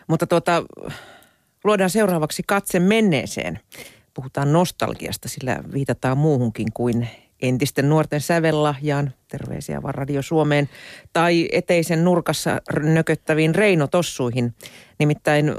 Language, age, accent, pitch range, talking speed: Finnish, 40-59, native, 125-180 Hz, 90 wpm